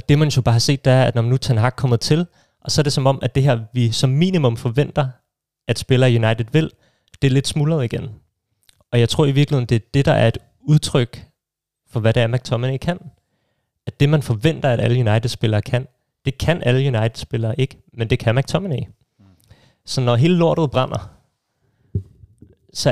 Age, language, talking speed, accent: 30-49, Danish, 200 wpm, native